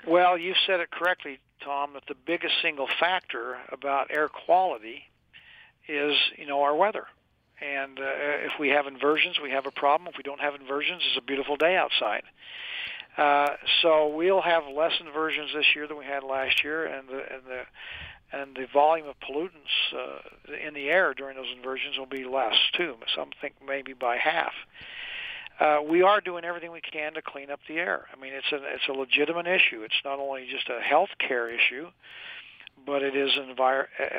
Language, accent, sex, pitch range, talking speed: English, American, male, 135-155 Hz, 185 wpm